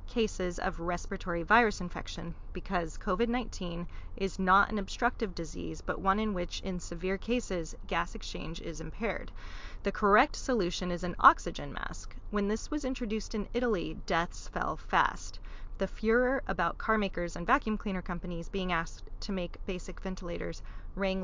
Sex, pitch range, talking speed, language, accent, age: female, 175-210 Hz, 155 wpm, English, American, 30-49